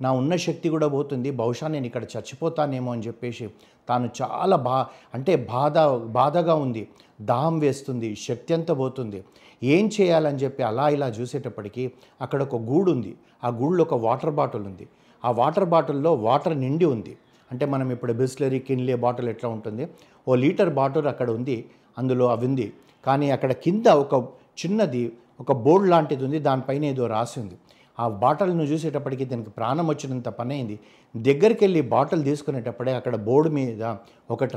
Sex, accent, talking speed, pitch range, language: male, native, 155 wpm, 120-155 Hz, Telugu